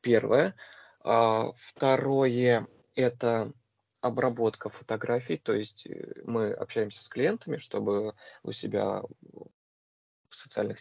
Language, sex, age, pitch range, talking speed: Russian, male, 20-39, 105-120 Hz, 90 wpm